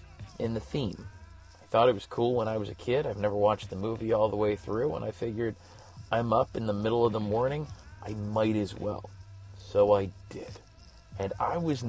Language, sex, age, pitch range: English, male, 30-49, 100-130 Hz